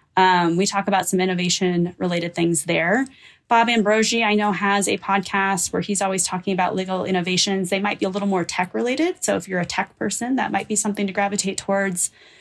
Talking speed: 205 wpm